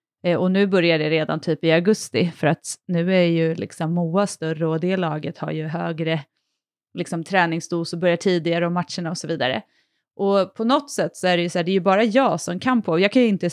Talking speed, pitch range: 240 wpm, 170-205 Hz